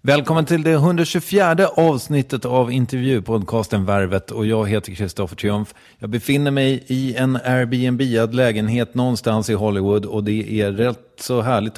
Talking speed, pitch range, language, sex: 155 wpm, 110-140 Hz, English, male